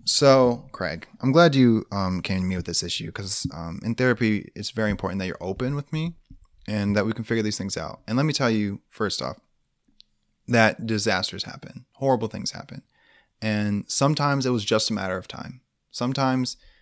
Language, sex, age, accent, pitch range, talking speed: English, male, 20-39, American, 100-130 Hz, 195 wpm